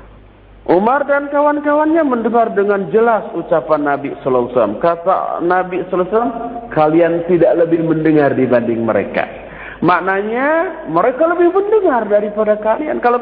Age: 50-69